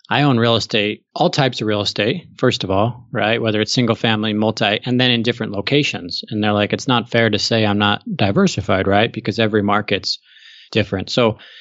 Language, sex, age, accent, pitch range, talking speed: English, male, 20-39, American, 105-125 Hz, 205 wpm